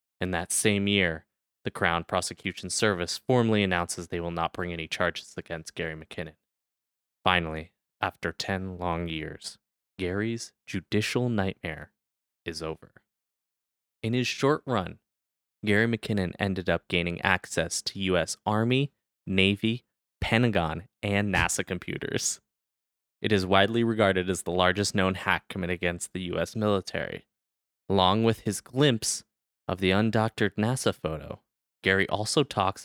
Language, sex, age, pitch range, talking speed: English, male, 20-39, 90-105 Hz, 135 wpm